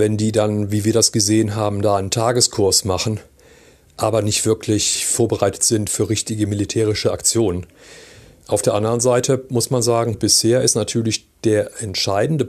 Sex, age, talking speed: male, 40-59, 160 wpm